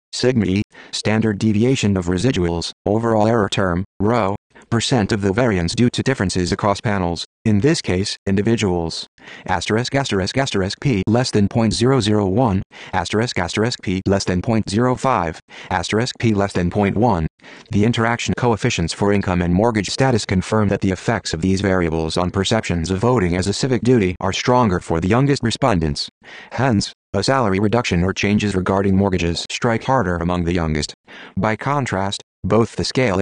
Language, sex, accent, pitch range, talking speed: English, male, American, 95-115 Hz, 160 wpm